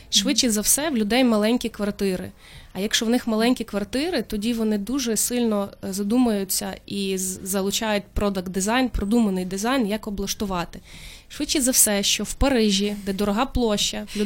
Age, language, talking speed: 20-39, Ukrainian, 145 wpm